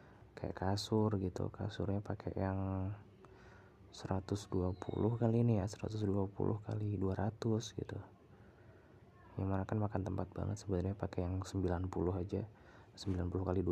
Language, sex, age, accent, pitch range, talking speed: Indonesian, male, 20-39, native, 95-105 Hz, 120 wpm